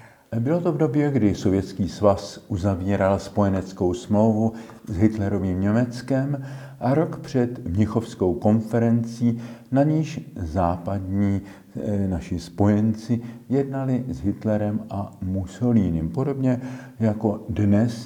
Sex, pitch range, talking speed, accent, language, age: male, 90-115 Hz, 105 wpm, native, Czech, 50-69